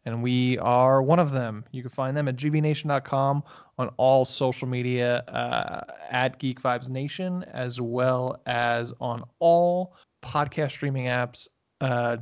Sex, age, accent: male, 20-39, American